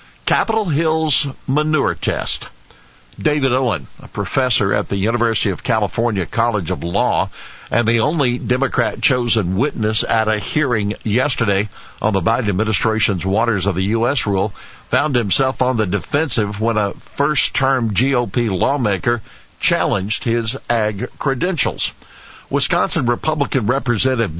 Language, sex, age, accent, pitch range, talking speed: English, male, 50-69, American, 100-125 Hz, 125 wpm